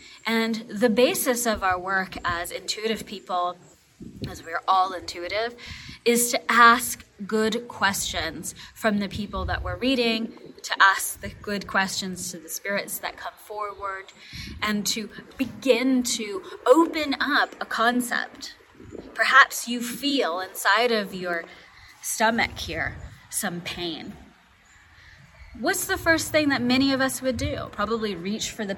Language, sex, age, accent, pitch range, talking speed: English, female, 20-39, American, 190-245 Hz, 140 wpm